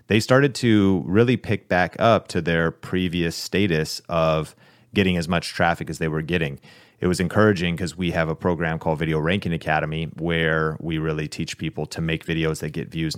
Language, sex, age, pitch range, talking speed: English, male, 30-49, 80-100 Hz, 195 wpm